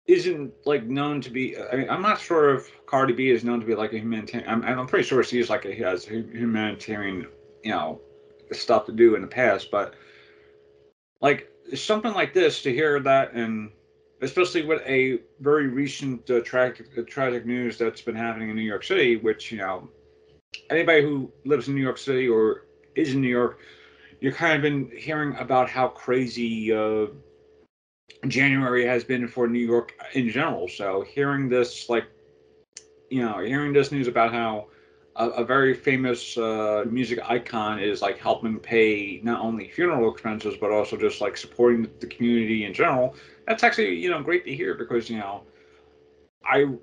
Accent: American